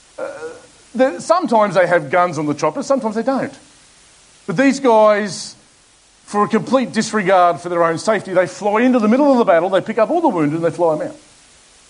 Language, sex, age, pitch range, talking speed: English, male, 40-59, 155-215 Hz, 200 wpm